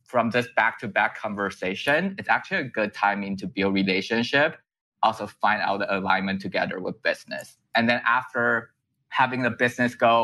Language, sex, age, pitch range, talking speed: English, male, 20-39, 95-115 Hz, 160 wpm